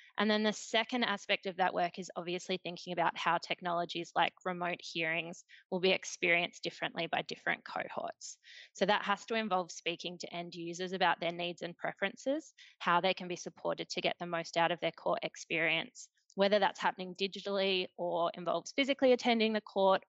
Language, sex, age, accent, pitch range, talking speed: English, female, 20-39, Australian, 175-200 Hz, 185 wpm